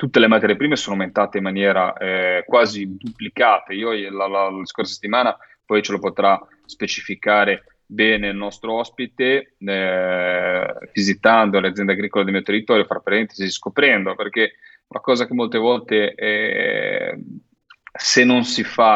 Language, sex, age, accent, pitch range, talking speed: Italian, male, 30-49, native, 95-110 Hz, 150 wpm